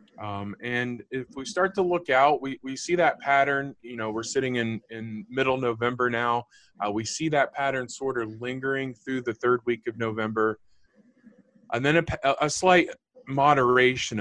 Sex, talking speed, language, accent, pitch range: male, 175 wpm, English, American, 110-140 Hz